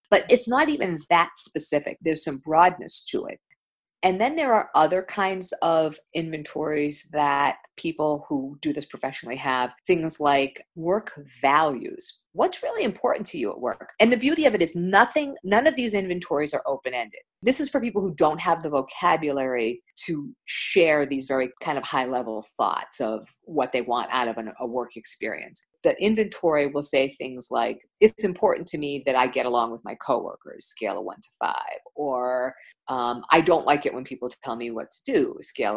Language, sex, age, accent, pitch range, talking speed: English, female, 50-69, American, 135-195 Hz, 190 wpm